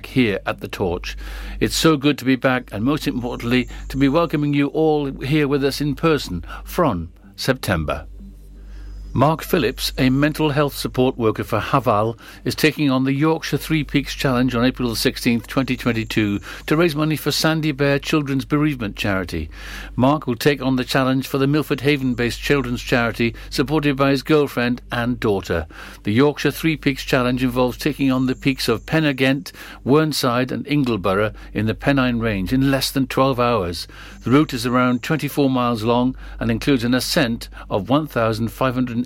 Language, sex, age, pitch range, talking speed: English, male, 60-79, 115-140 Hz, 170 wpm